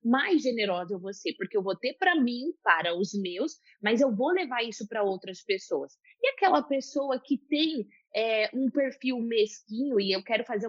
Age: 20-39